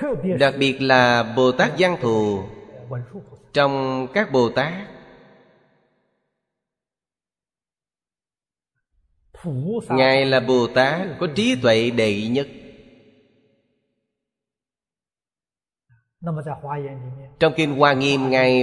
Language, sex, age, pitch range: Vietnamese, male, 30-49, 125-150 Hz